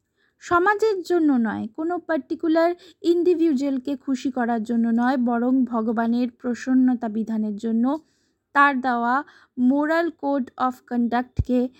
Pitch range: 235-305 Hz